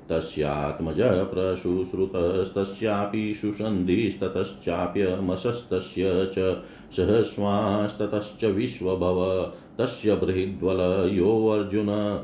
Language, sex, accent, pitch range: Hindi, male, native, 95-110 Hz